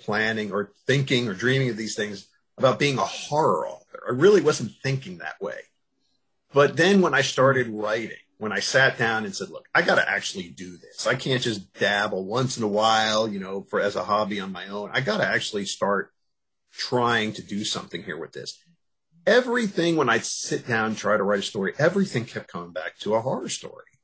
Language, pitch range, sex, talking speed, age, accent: English, 105-145 Hz, male, 215 wpm, 50-69, American